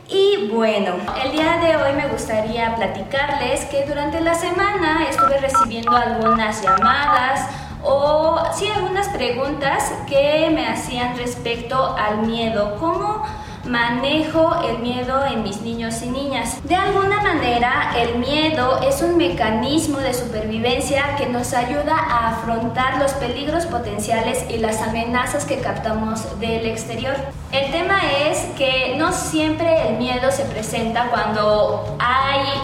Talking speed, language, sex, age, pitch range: 135 wpm, Spanish, female, 20-39, 230-295 Hz